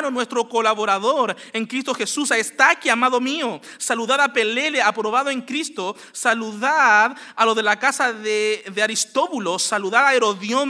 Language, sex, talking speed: English, male, 150 wpm